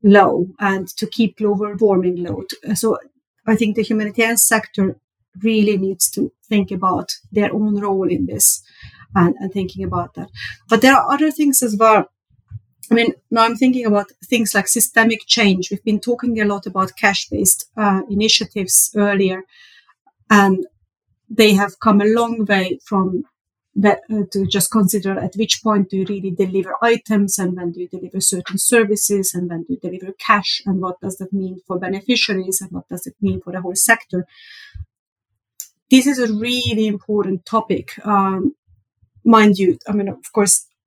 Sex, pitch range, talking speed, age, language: female, 185-220 Hz, 170 wpm, 30-49, English